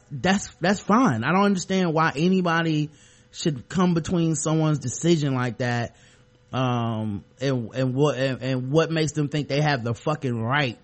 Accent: American